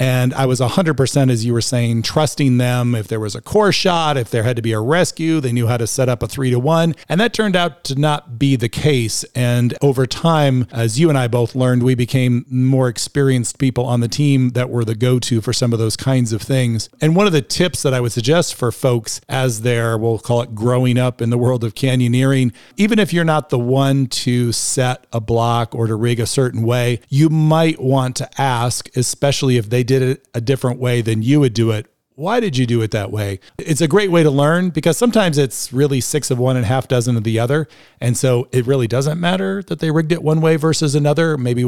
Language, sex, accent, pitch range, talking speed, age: English, male, American, 120-145 Hz, 245 wpm, 40-59